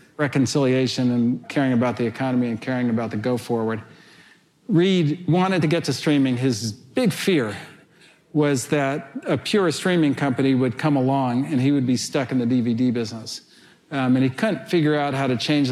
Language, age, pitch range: English, 50-69, 125-150 Hz